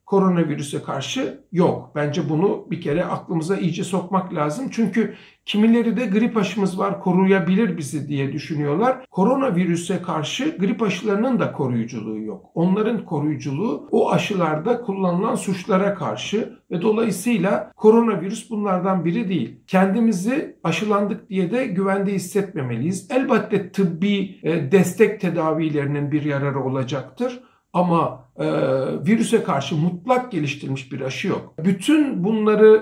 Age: 60-79